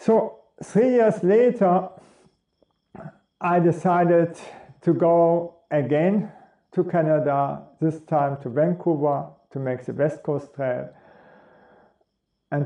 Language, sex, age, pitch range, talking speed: English, male, 50-69, 145-180 Hz, 105 wpm